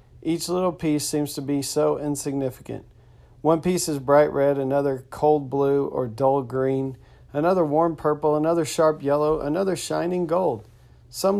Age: 40-59